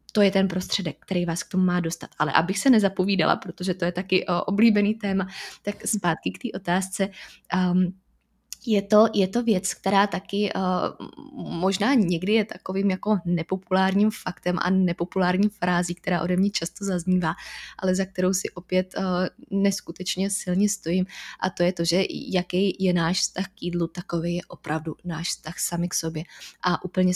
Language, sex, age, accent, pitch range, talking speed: Czech, female, 20-39, native, 170-195 Hz, 170 wpm